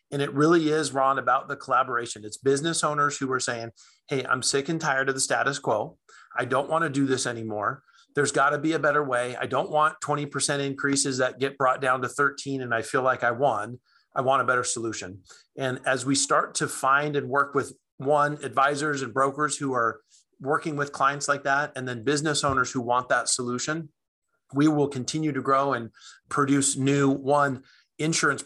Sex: male